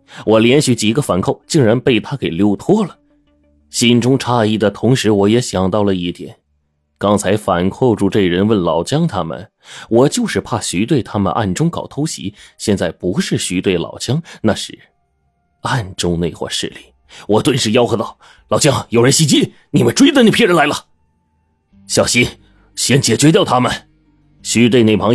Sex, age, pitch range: male, 30-49, 100-135 Hz